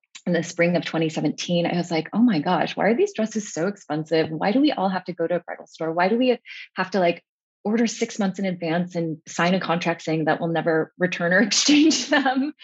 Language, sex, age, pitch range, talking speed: English, female, 20-39, 160-210 Hz, 240 wpm